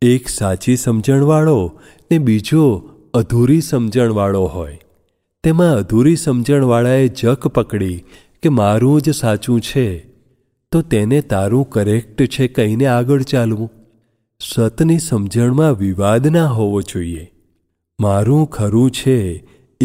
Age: 40-59